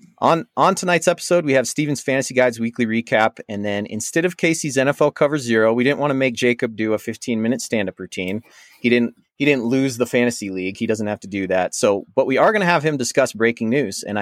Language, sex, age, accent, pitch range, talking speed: English, male, 30-49, American, 105-140 Hz, 235 wpm